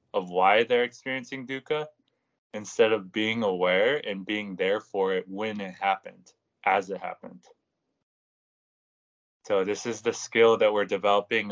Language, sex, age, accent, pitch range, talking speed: English, male, 20-39, American, 95-115 Hz, 145 wpm